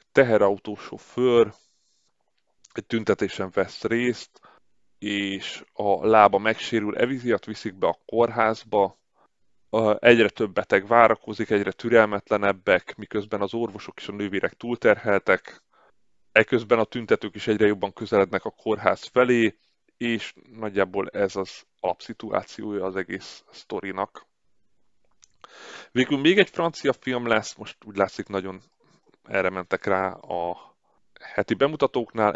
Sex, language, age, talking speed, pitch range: male, Hungarian, 30-49, 115 wpm, 100-115 Hz